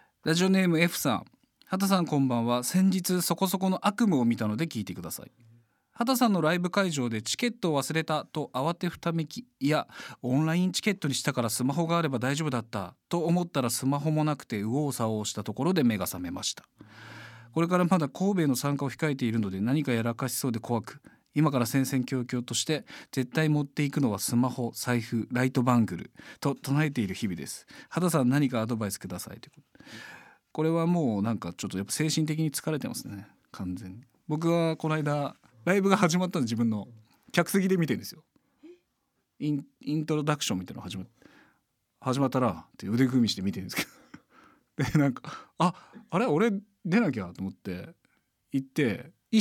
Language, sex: Japanese, male